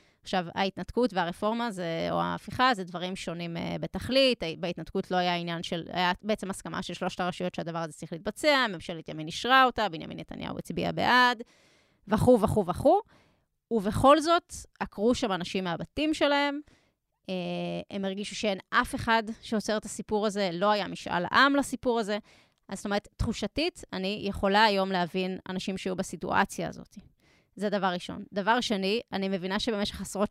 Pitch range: 180-225 Hz